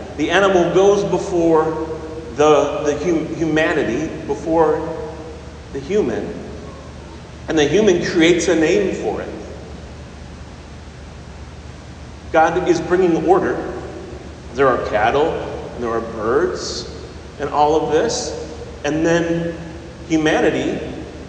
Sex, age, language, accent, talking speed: male, 40-59, English, American, 100 wpm